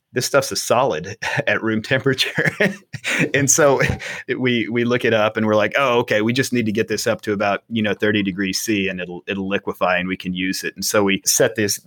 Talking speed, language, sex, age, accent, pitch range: 240 wpm, English, male, 30-49, American, 95-115 Hz